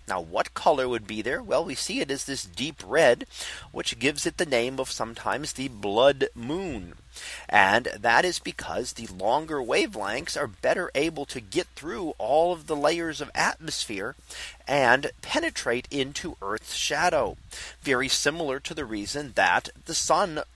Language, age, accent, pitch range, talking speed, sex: English, 30-49, American, 120-160 Hz, 165 wpm, male